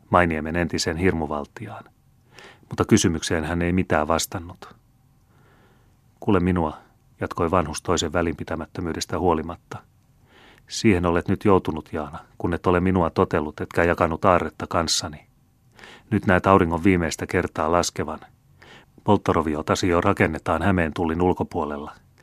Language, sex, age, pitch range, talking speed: Finnish, male, 30-49, 85-105 Hz, 115 wpm